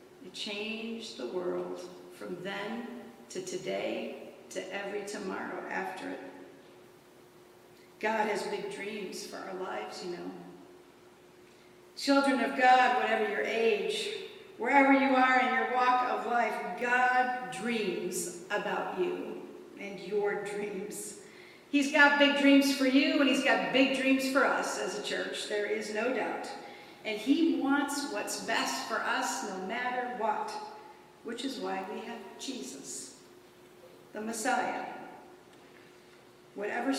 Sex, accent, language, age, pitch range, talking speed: female, American, English, 50-69, 210-265 Hz, 130 wpm